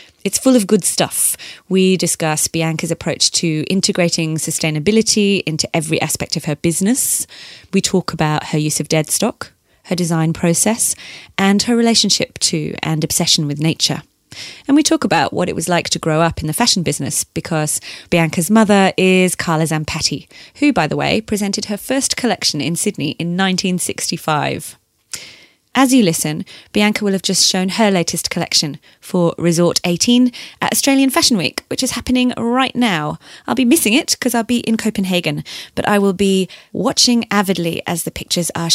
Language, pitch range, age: English, 165-215 Hz, 30-49